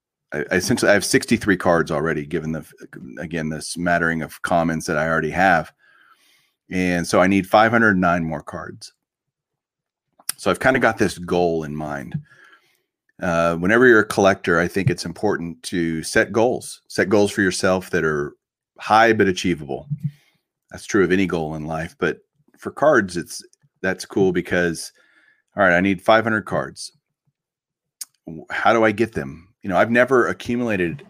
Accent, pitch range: American, 85-100 Hz